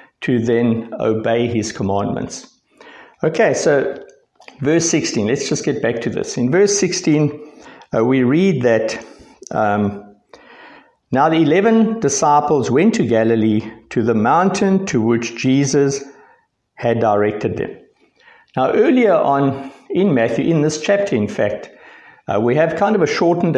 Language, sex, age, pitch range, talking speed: English, male, 60-79, 115-155 Hz, 145 wpm